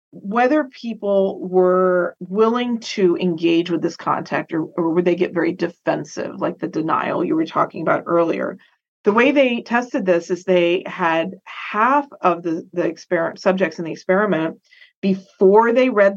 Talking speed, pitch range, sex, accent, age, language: 165 wpm, 180-225 Hz, female, American, 40-59, English